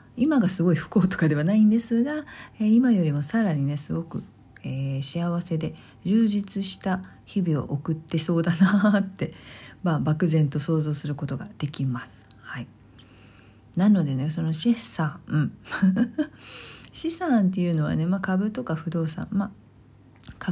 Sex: female